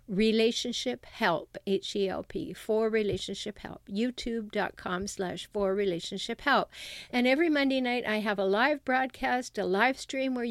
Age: 50-69